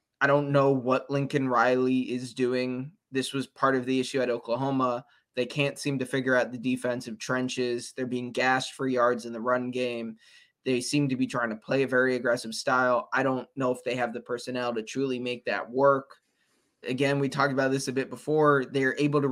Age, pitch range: 20-39, 125-140 Hz